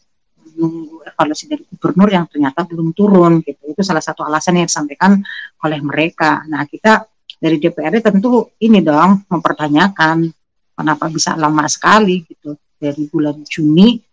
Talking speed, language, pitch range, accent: 135 wpm, Indonesian, 150-175 Hz, native